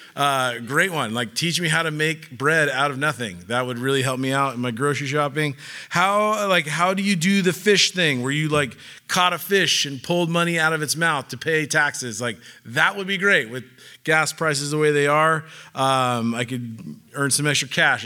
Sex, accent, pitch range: male, American, 135-180 Hz